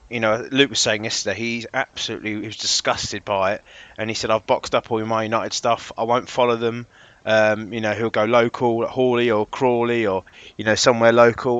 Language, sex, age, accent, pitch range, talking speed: English, male, 20-39, British, 105-120 Hz, 210 wpm